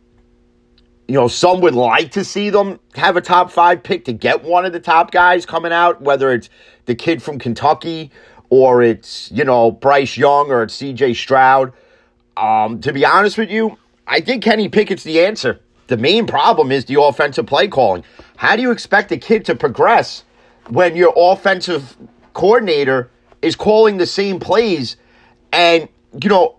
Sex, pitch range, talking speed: male, 125-200 Hz, 175 wpm